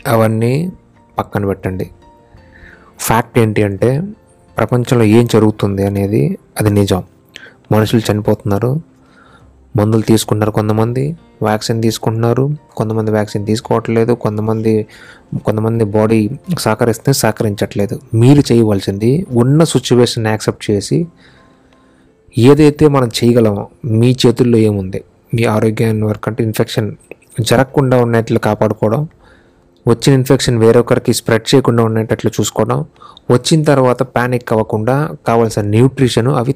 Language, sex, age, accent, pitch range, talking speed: Telugu, male, 20-39, native, 105-130 Hz, 100 wpm